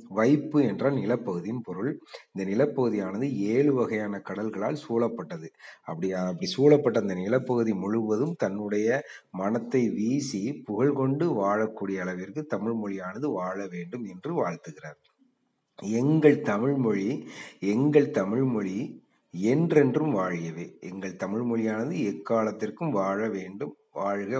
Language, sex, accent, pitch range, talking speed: Tamil, male, native, 105-145 Hz, 100 wpm